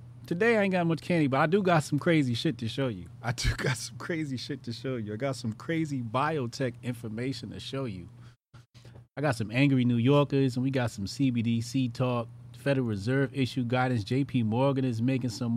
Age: 30-49